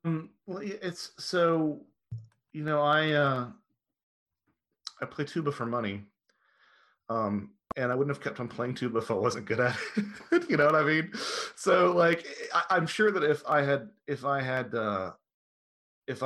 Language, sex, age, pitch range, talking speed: English, male, 30-49, 100-150 Hz, 165 wpm